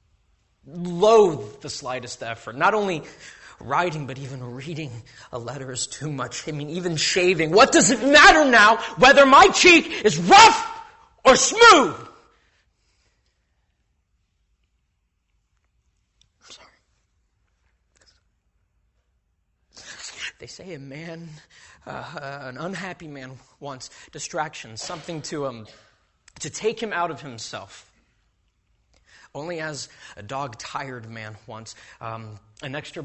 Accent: American